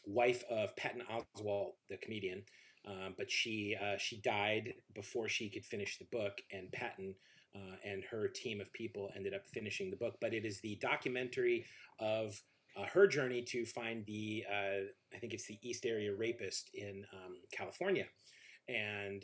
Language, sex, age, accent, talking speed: English, male, 30-49, American, 170 wpm